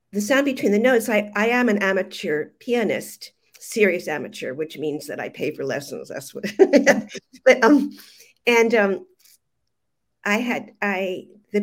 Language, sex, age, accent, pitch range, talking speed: English, female, 50-69, American, 185-230 Hz, 155 wpm